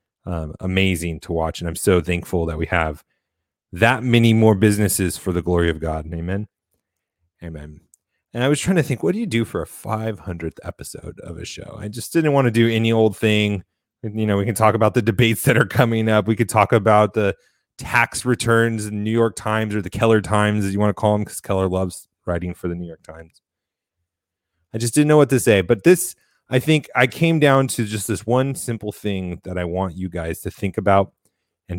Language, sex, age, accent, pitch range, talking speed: English, male, 30-49, American, 90-115 Hz, 225 wpm